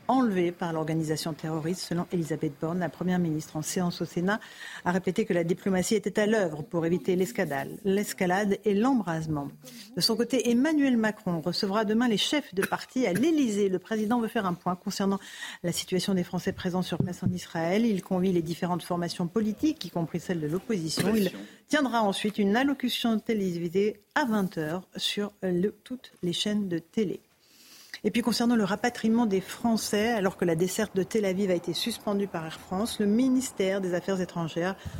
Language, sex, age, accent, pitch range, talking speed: French, female, 50-69, French, 180-220 Hz, 185 wpm